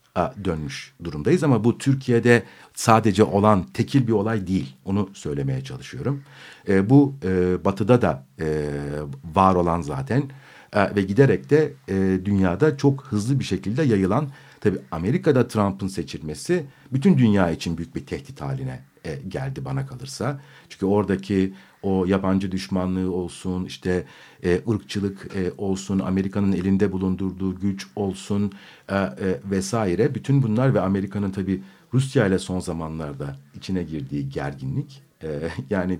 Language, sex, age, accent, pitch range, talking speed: Turkish, male, 50-69, native, 95-130 Hz, 135 wpm